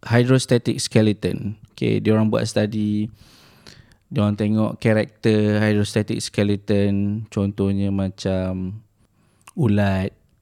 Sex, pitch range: male, 105-115 Hz